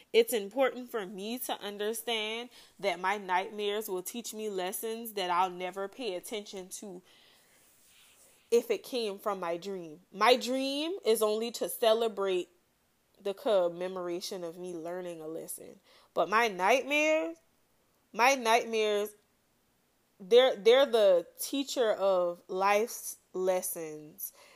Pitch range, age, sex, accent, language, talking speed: 190-245 Hz, 20-39, female, American, English, 120 wpm